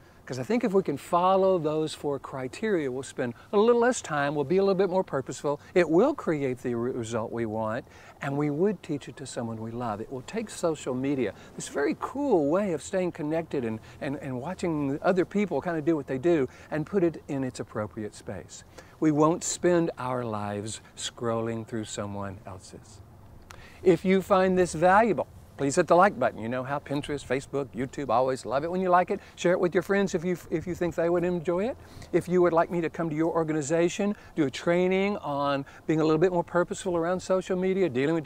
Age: 60-79